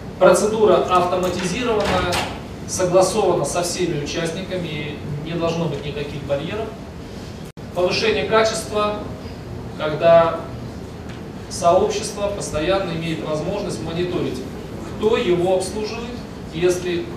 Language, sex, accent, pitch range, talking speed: Russian, male, native, 140-185 Hz, 80 wpm